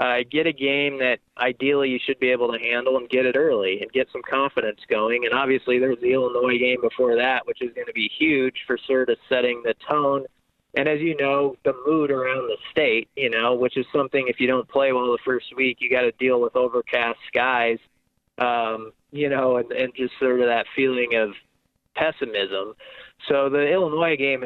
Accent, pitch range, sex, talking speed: American, 125-145 Hz, male, 210 wpm